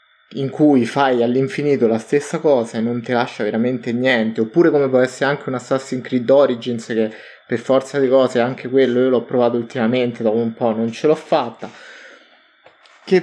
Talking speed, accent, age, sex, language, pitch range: 185 wpm, native, 20-39, male, Italian, 120-140 Hz